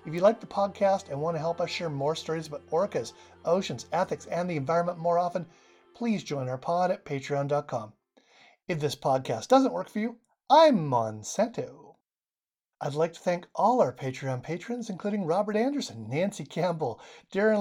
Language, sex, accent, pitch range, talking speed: English, male, American, 135-190 Hz, 175 wpm